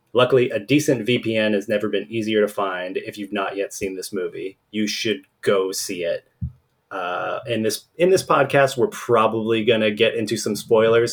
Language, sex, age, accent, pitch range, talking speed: English, male, 30-49, American, 105-135 Hz, 195 wpm